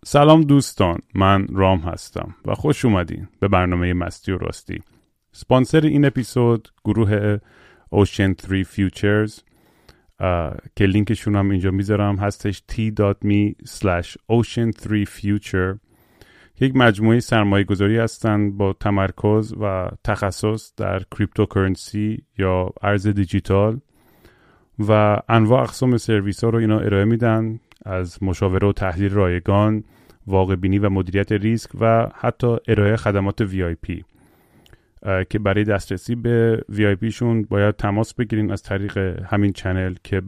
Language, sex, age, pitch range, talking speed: Persian, male, 30-49, 95-115 Hz, 115 wpm